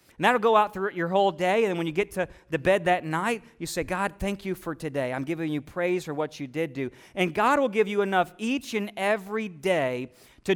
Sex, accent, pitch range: male, American, 160-205 Hz